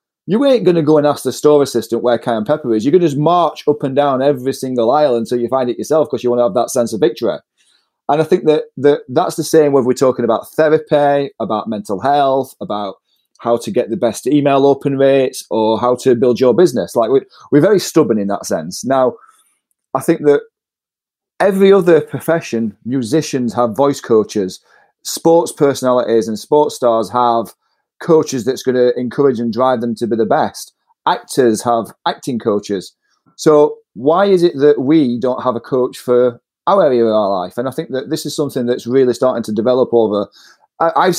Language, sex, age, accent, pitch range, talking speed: English, male, 30-49, British, 120-155 Hz, 205 wpm